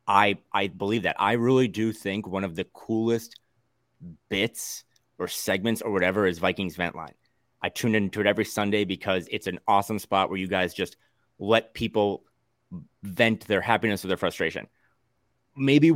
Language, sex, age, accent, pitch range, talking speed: English, male, 30-49, American, 95-115 Hz, 170 wpm